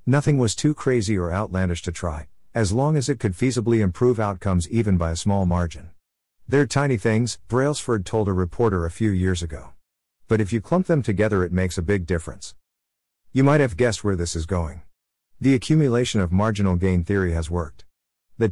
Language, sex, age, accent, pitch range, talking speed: English, male, 50-69, American, 90-120 Hz, 195 wpm